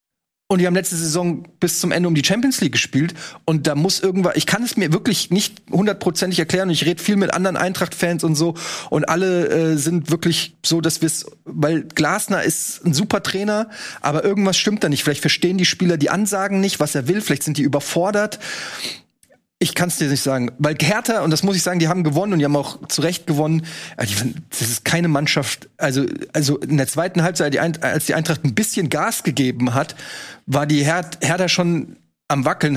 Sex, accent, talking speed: male, German, 210 wpm